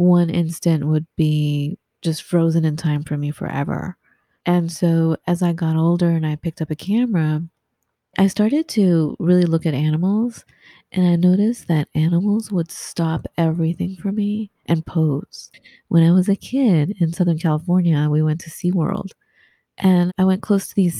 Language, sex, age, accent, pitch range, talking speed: English, female, 30-49, American, 165-205 Hz, 170 wpm